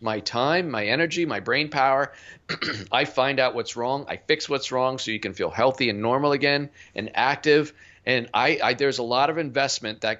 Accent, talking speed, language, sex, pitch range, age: American, 205 wpm, English, male, 115-150 Hz, 50-69